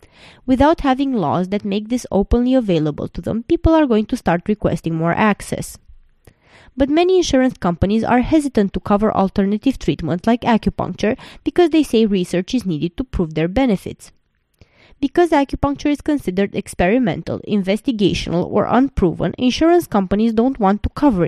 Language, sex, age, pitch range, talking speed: English, female, 20-39, 185-250 Hz, 150 wpm